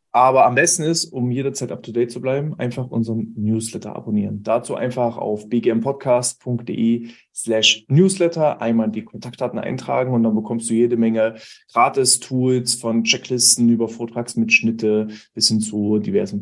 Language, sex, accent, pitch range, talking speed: German, male, German, 115-140 Hz, 135 wpm